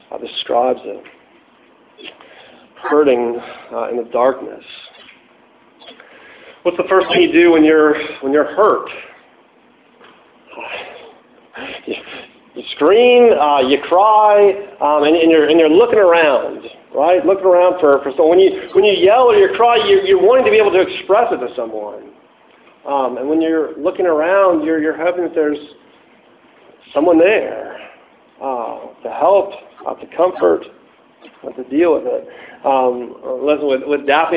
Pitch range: 150-210 Hz